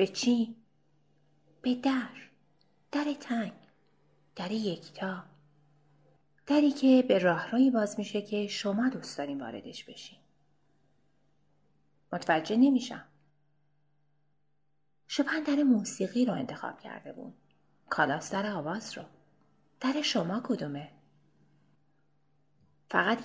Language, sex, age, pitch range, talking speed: Persian, female, 30-49, 160-240 Hz, 95 wpm